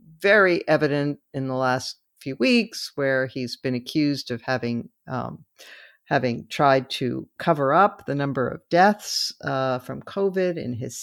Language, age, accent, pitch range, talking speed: English, 50-69, American, 130-180 Hz, 150 wpm